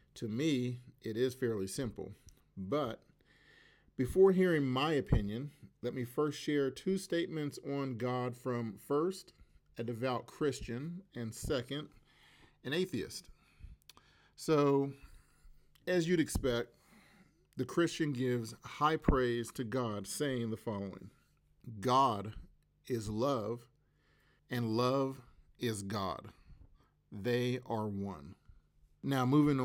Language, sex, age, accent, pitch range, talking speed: English, male, 40-59, American, 110-140 Hz, 110 wpm